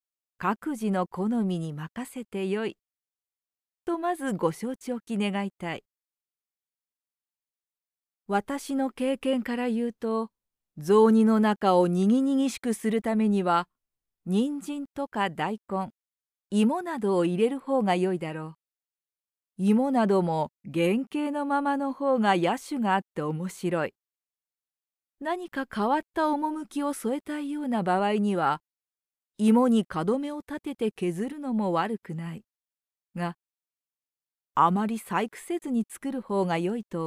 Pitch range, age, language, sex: 190-270 Hz, 40-59, Japanese, female